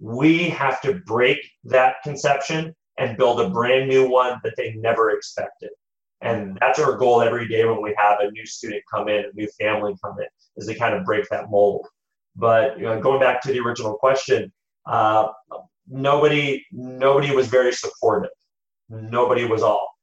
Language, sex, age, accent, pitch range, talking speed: English, male, 30-49, American, 115-140 Hz, 180 wpm